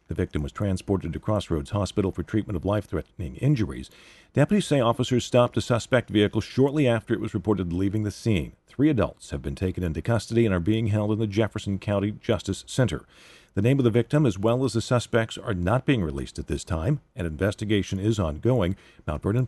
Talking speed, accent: 205 wpm, American